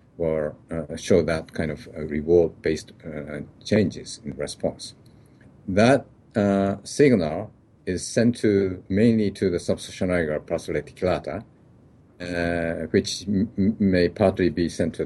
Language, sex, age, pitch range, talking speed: English, male, 50-69, 85-105 Hz, 130 wpm